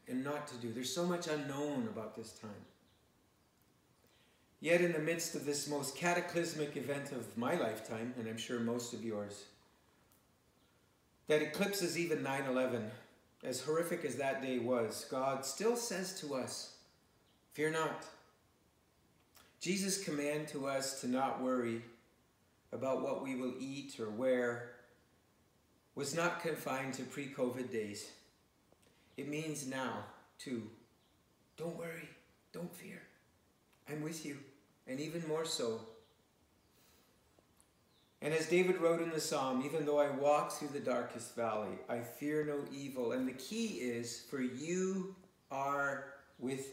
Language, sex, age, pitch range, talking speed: English, male, 50-69, 120-155 Hz, 140 wpm